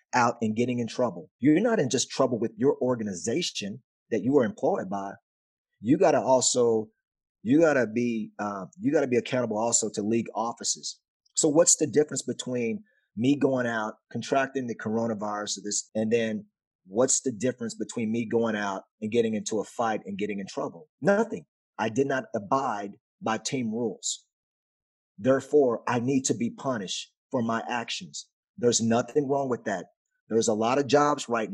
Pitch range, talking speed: 115-140 Hz, 175 wpm